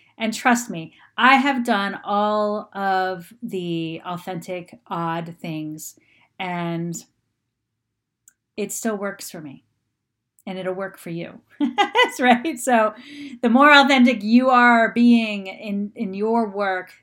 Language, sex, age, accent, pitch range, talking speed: English, female, 40-59, American, 180-235 Hz, 125 wpm